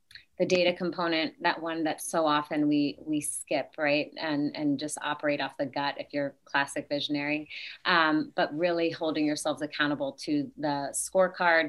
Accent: American